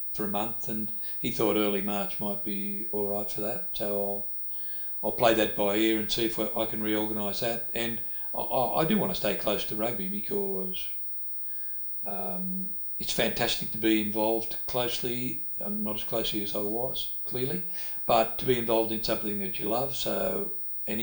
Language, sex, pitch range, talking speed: English, male, 105-125 Hz, 185 wpm